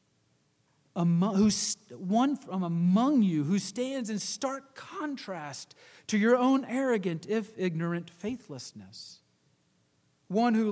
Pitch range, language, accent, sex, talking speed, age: 185-235 Hz, English, American, male, 110 wpm, 40-59